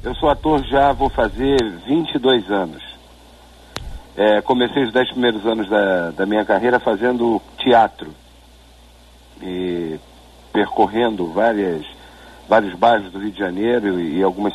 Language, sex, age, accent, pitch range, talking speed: Portuguese, male, 50-69, Brazilian, 90-135 Hz, 120 wpm